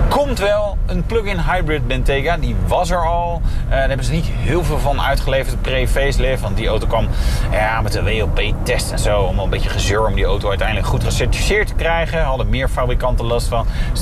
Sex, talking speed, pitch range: male, 220 wpm, 90-140 Hz